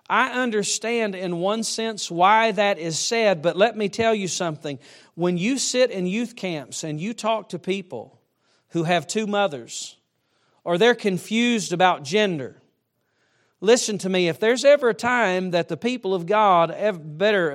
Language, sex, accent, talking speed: English, male, American, 170 wpm